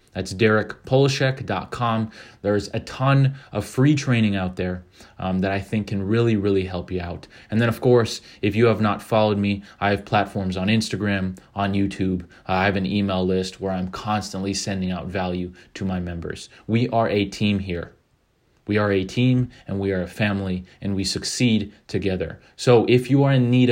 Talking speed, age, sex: 190 wpm, 20-39, male